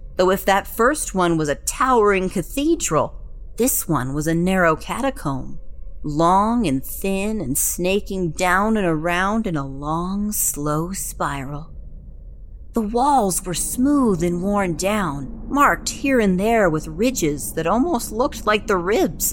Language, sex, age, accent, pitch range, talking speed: English, female, 40-59, American, 170-245 Hz, 145 wpm